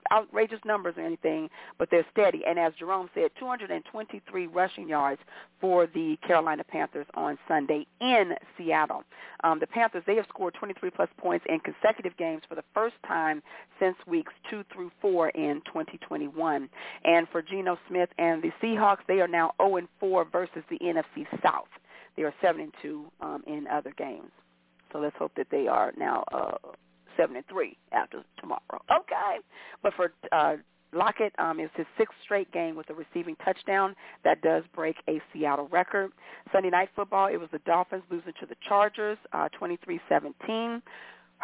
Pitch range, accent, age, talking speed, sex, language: 165-220 Hz, American, 40-59, 160 wpm, female, English